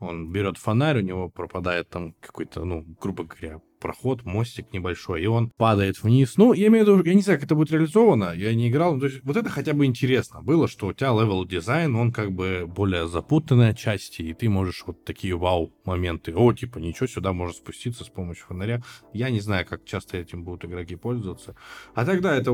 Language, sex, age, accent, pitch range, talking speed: Russian, male, 20-39, native, 90-120 Hz, 215 wpm